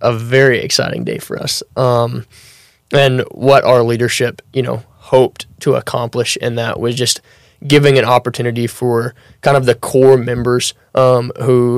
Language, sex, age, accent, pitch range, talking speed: English, male, 20-39, American, 120-130 Hz, 160 wpm